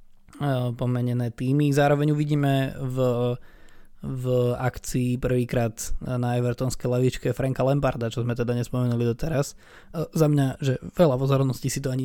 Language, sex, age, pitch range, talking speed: Slovak, male, 20-39, 120-135 Hz, 130 wpm